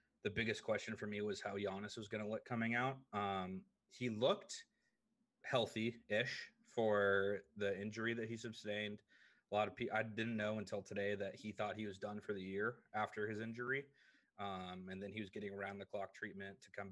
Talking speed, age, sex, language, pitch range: 195 wpm, 30-49, male, English, 100-115 Hz